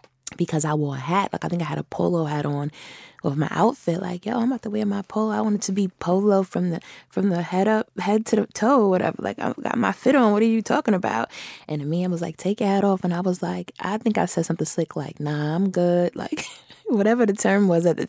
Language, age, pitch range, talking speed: English, 20-39, 155-195 Hz, 270 wpm